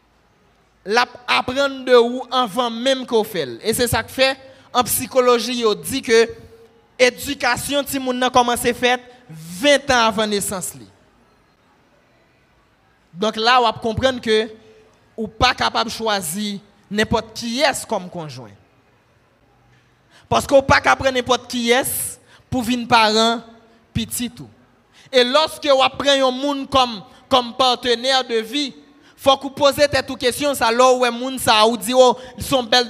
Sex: male